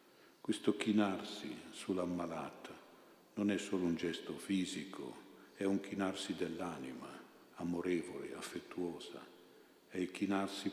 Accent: native